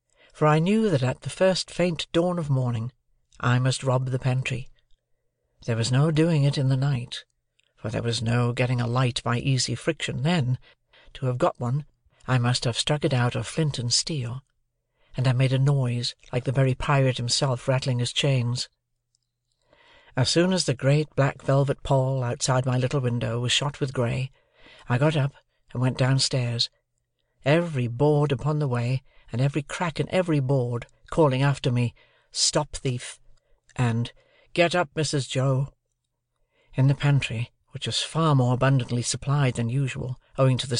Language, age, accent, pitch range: Korean, 60-79, British, 120-145 Hz